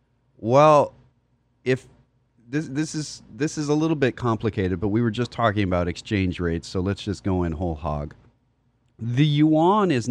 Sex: male